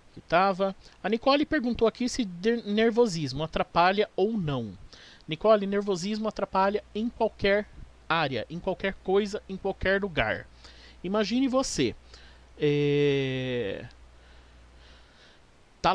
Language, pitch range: Portuguese, 155-210 Hz